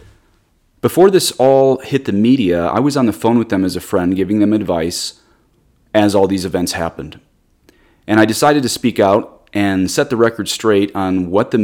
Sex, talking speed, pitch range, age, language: male, 195 wpm, 90-110 Hz, 30-49, English